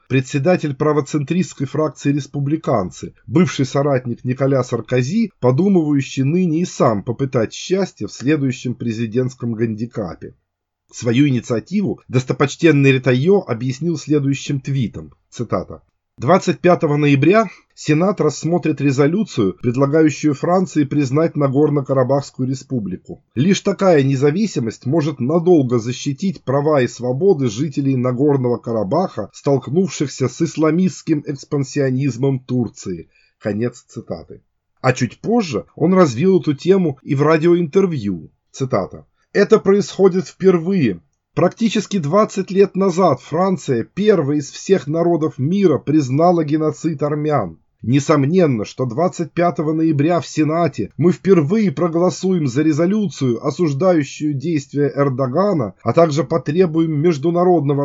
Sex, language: male, Russian